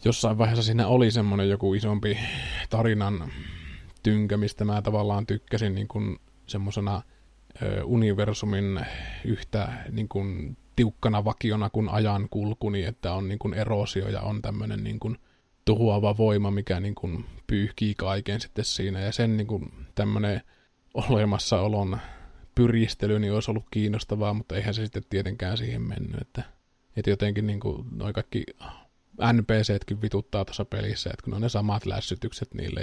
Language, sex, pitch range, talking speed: Finnish, male, 100-115 Hz, 145 wpm